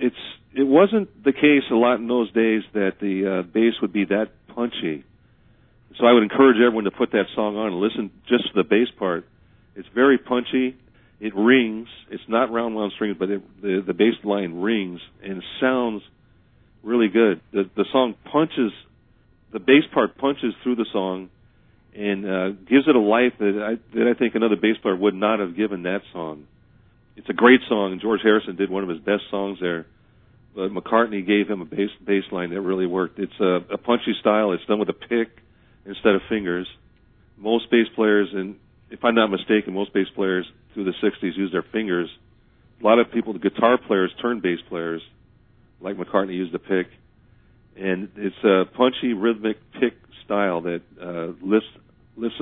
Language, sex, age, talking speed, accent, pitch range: English, male, 40-59, 190 wpm, American, 95-115 Hz